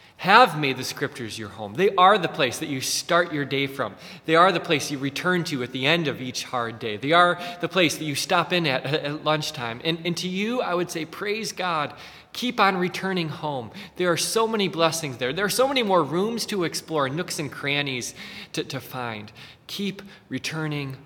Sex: male